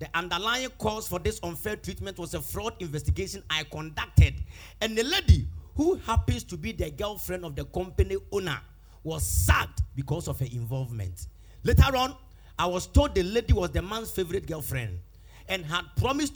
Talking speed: 170 wpm